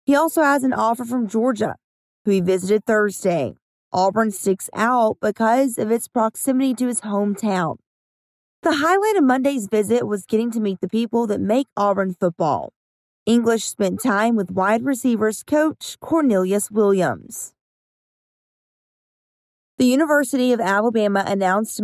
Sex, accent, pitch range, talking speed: female, American, 195-245 Hz, 135 wpm